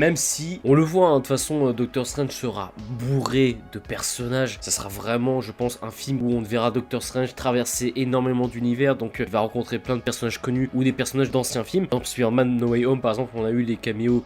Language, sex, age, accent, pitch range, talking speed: French, male, 20-39, French, 120-140 Hz, 235 wpm